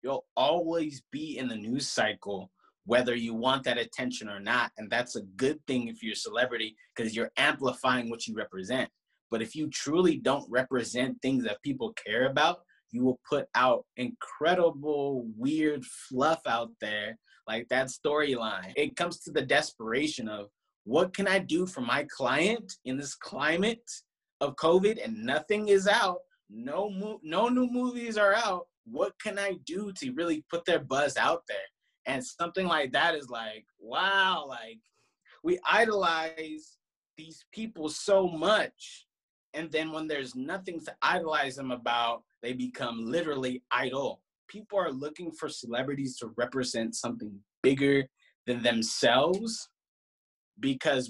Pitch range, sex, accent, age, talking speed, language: 125-195 Hz, male, American, 20-39, 155 wpm, English